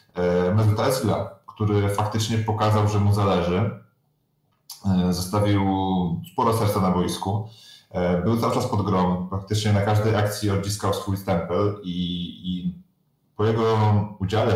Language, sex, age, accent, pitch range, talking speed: Polish, male, 30-49, native, 95-105 Hz, 115 wpm